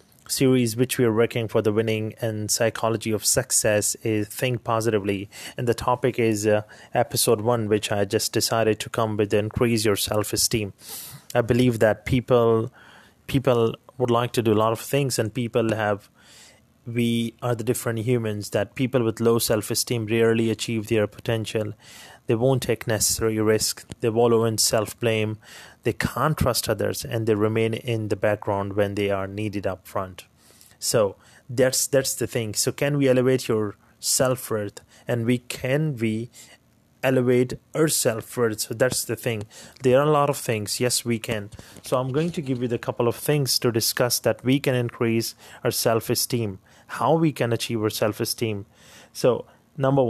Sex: male